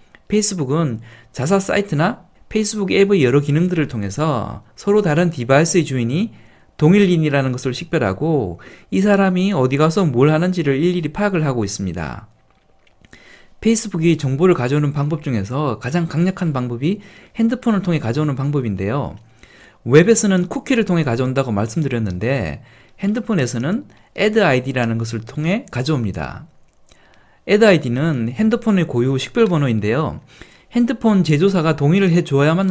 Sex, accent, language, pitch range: male, native, Korean, 120-185 Hz